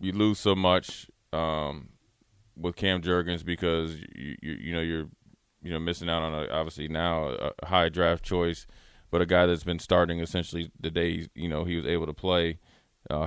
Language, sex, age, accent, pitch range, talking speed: English, male, 20-39, American, 80-95 Hz, 195 wpm